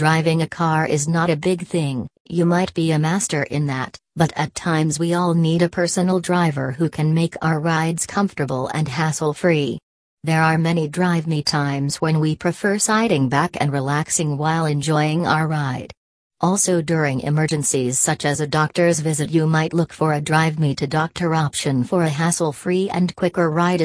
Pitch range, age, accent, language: 145-175 Hz, 40-59, American, English